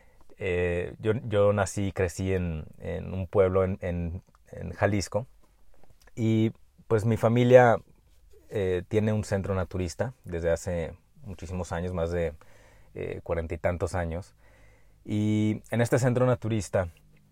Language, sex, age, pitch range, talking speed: Spanish, male, 30-49, 85-100 Hz, 135 wpm